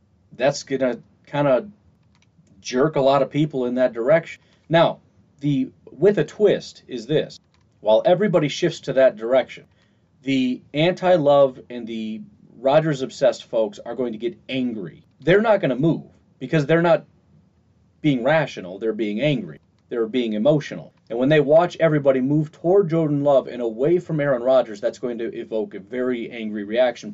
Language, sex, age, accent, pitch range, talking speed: English, male, 40-59, American, 110-150 Hz, 165 wpm